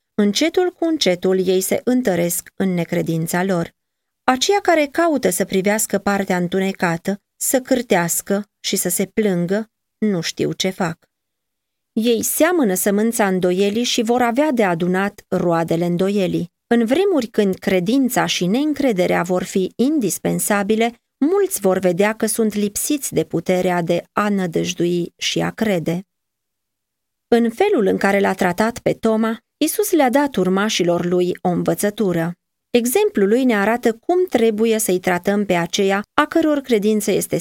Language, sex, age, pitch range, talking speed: Romanian, female, 30-49, 180-235 Hz, 145 wpm